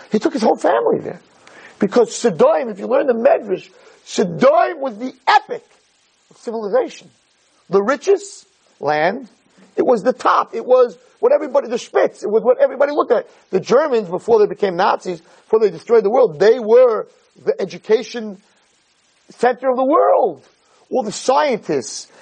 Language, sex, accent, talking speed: English, male, American, 160 wpm